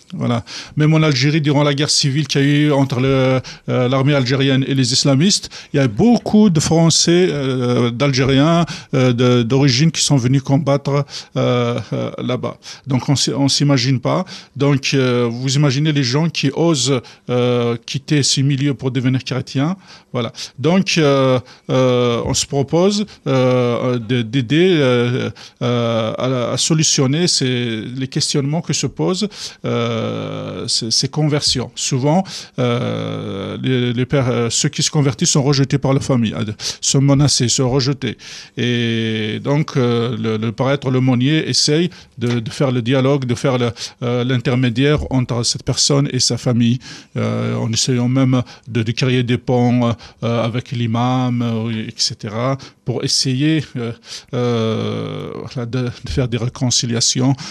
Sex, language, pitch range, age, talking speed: male, French, 120-145 Hz, 50-69, 160 wpm